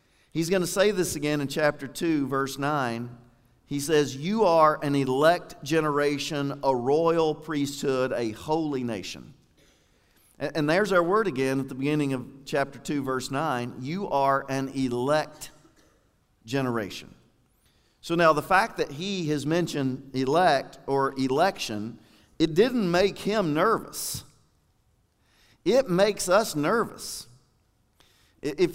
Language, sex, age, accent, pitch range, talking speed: English, male, 50-69, American, 130-160 Hz, 130 wpm